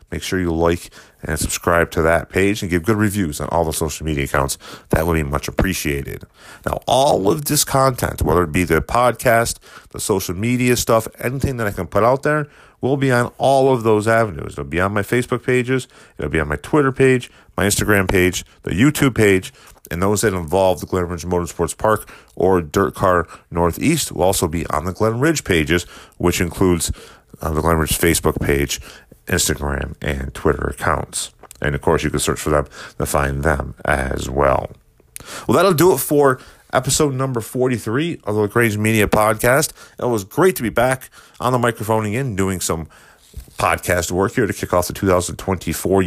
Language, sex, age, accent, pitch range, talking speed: English, male, 40-59, American, 80-120 Hz, 195 wpm